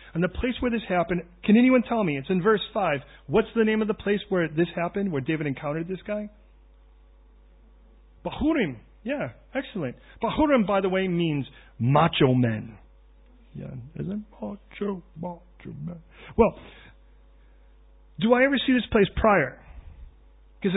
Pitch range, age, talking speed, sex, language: 130-205 Hz, 40-59, 150 wpm, male, English